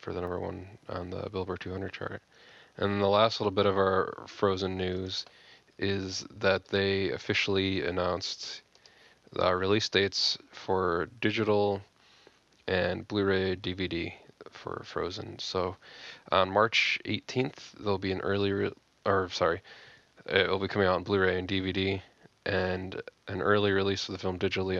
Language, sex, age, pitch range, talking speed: English, male, 20-39, 95-105 Hz, 145 wpm